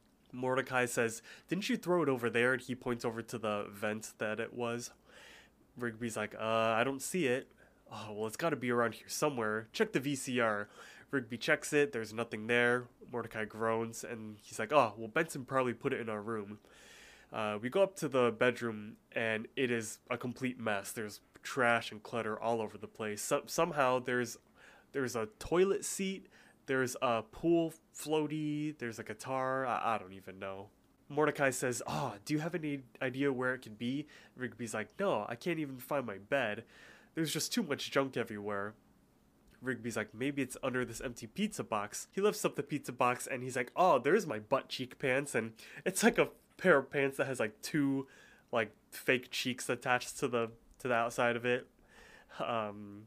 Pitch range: 110-140 Hz